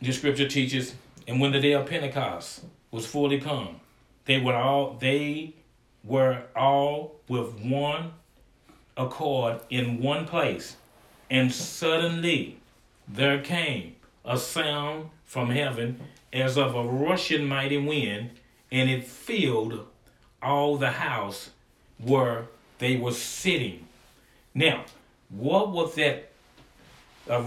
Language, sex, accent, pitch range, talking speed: English, male, American, 125-150 Hz, 115 wpm